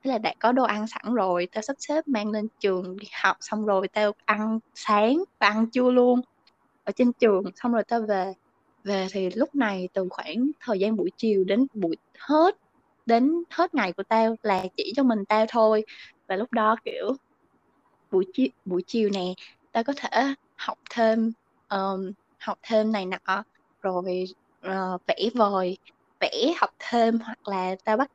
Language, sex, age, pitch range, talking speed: Vietnamese, female, 20-39, 190-245 Hz, 180 wpm